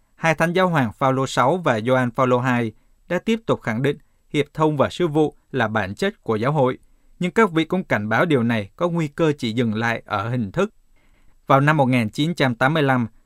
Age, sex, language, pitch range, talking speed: 20-39, male, Vietnamese, 120-155 Hz, 210 wpm